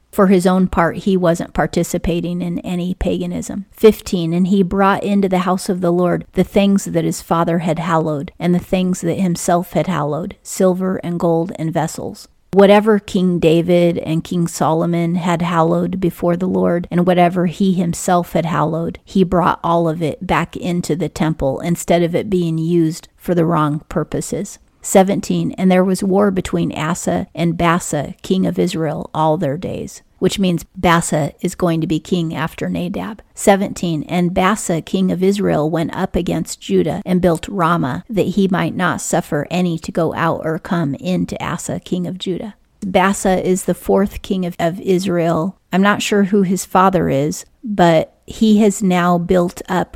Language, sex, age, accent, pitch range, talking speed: English, female, 40-59, American, 165-190 Hz, 180 wpm